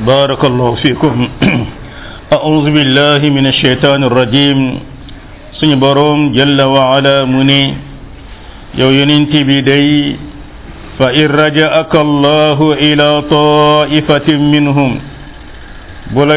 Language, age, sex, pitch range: French, 50-69, male, 140-160 Hz